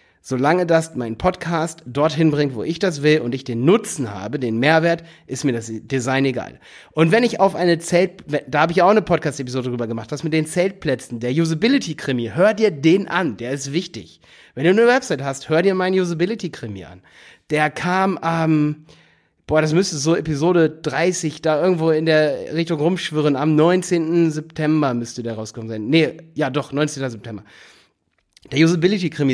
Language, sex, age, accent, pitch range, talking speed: German, male, 30-49, German, 135-175 Hz, 180 wpm